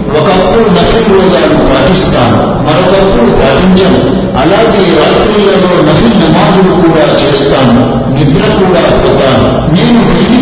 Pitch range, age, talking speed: 165-195 Hz, 50-69, 100 wpm